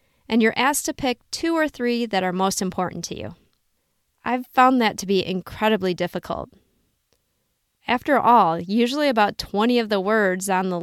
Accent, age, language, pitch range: American, 20-39, English, 190-245 Hz